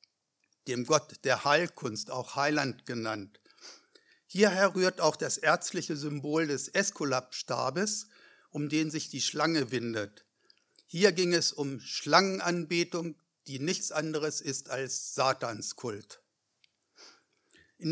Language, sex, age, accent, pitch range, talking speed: German, male, 60-79, German, 140-180 Hz, 110 wpm